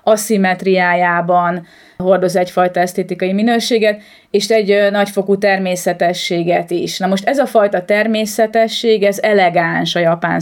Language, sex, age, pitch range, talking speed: Hungarian, female, 30-49, 180-215 Hz, 120 wpm